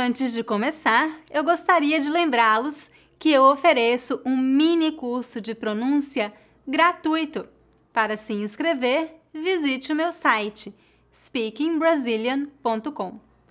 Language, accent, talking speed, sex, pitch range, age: English, Brazilian, 105 wpm, female, 235-315 Hz, 20-39